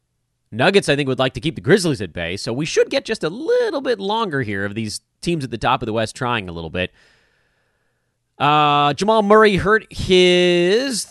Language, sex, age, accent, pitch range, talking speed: English, male, 30-49, American, 105-155 Hz, 210 wpm